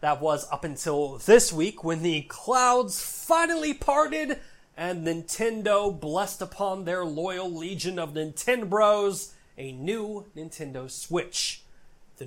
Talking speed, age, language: 120 wpm, 30-49, English